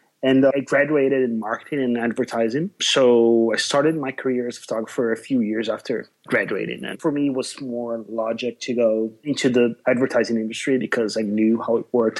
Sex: male